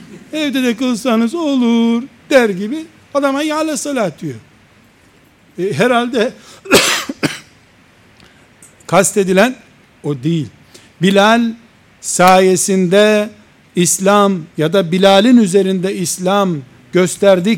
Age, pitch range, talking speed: 60-79, 190-235 Hz, 80 wpm